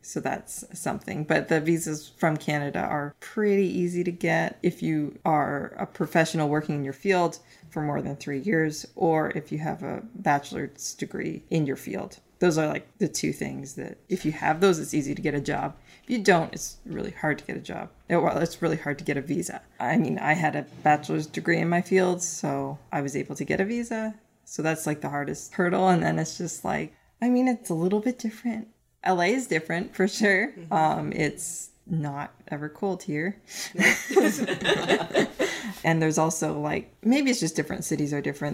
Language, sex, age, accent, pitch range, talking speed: English, female, 20-39, American, 150-190 Hz, 200 wpm